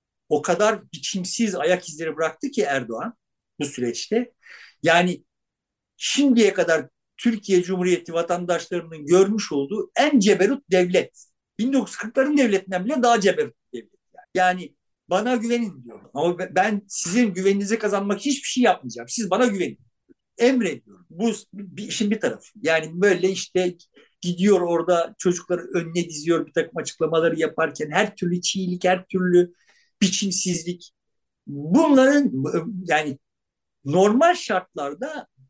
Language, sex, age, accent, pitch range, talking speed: Turkish, male, 50-69, native, 165-230 Hz, 120 wpm